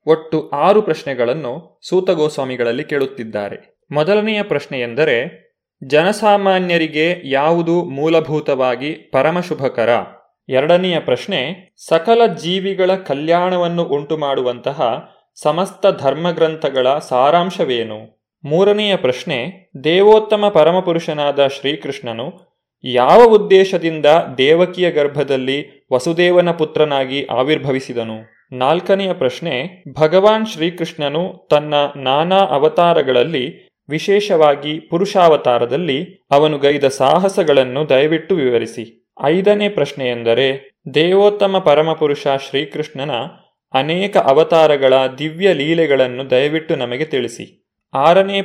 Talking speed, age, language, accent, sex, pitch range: 75 wpm, 20-39, Kannada, native, male, 135-180 Hz